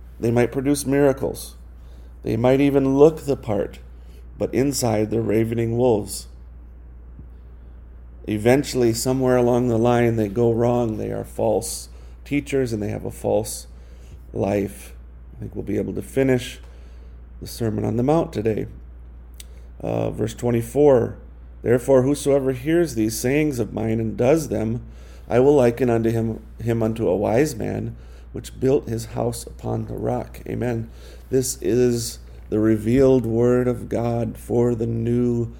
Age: 40-59